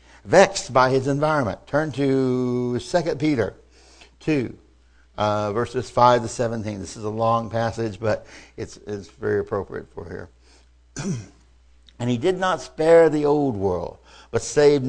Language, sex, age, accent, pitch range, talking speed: English, male, 60-79, American, 110-150 Hz, 145 wpm